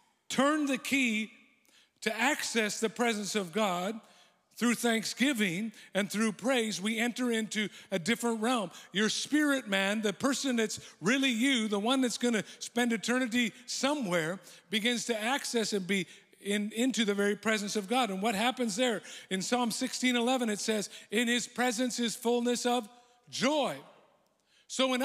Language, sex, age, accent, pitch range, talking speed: English, male, 50-69, American, 210-250 Hz, 160 wpm